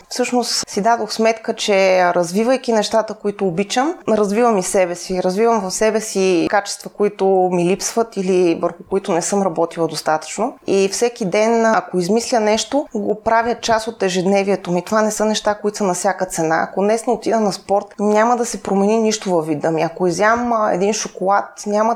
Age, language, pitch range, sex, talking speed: 20-39, Bulgarian, 185-215 Hz, female, 185 wpm